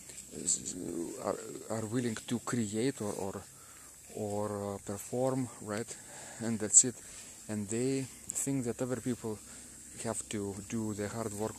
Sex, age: male, 40-59